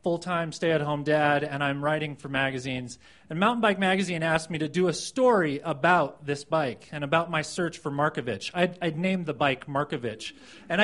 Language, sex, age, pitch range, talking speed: English, male, 30-49, 160-255 Hz, 190 wpm